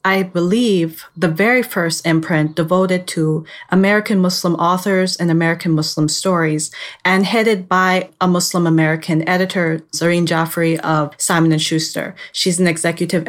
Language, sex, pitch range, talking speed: English, female, 160-185 Hz, 135 wpm